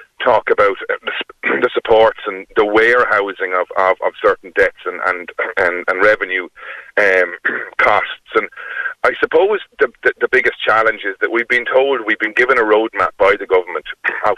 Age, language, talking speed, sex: 40-59, English, 170 wpm, male